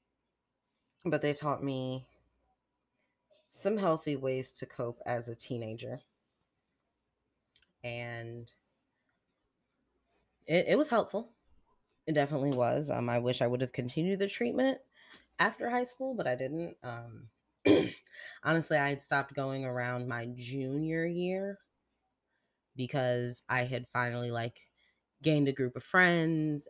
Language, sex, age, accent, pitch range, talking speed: English, female, 20-39, American, 125-150 Hz, 125 wpm